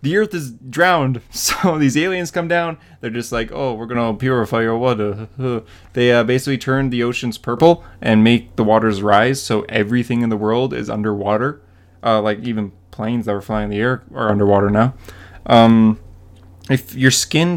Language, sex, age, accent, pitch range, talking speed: English, male, 20-39, American, 105-130 Hz, 190 wpm